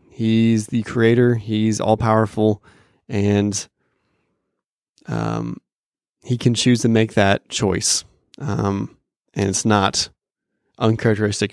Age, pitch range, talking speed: 20-39, 100-120 Hz, 100 wpm